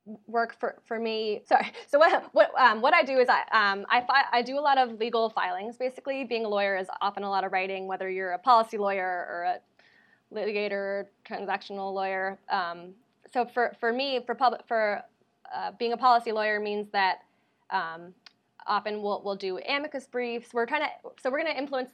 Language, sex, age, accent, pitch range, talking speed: English, female, 20-39, American, 200-245 Hz, 200 wpm